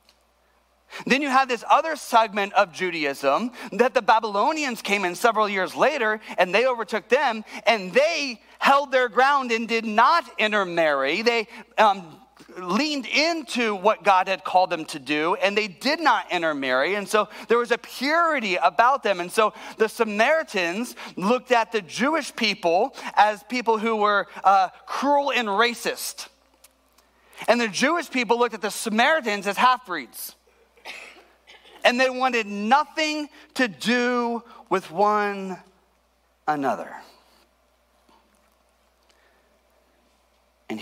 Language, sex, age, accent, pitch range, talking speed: English, male, 30-49, American, 170-245 Hz, 130 wpm